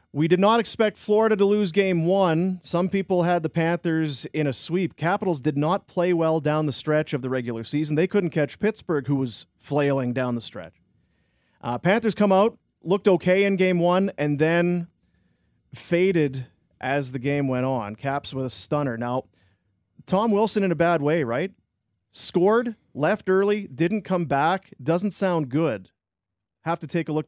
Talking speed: 180 wpm